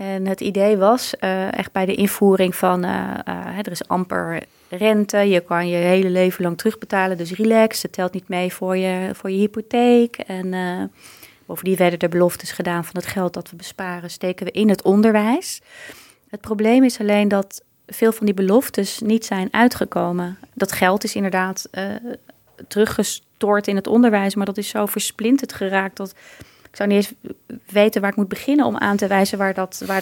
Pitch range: 190-220 Hz